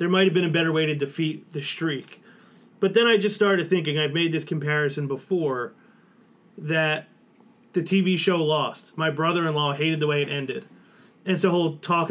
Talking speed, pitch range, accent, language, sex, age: 190 wpm, 155-190 Hz, American, English, male, 30-49